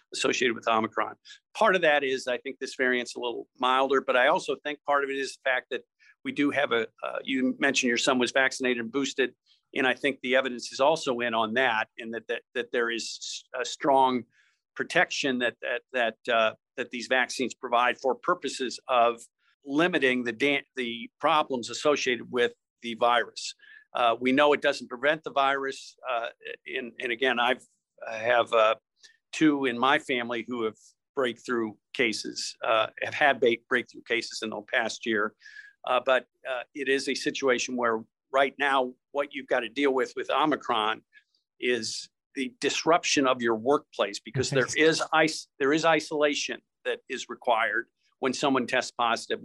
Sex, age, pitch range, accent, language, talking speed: male, 50-69, 120-150 Hz, American, English, 180 wpm